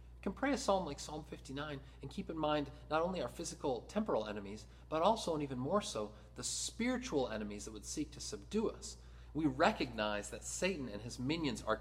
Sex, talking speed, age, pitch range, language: male, 205 wpm, 40-59, 105-140 Hz, English